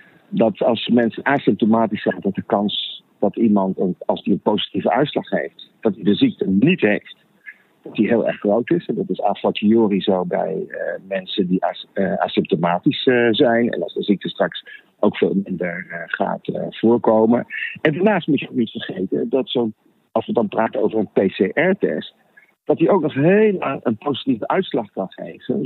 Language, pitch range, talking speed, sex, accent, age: Dutch, 105-145 Hz, 175 wpm, male, Dutch, 50-69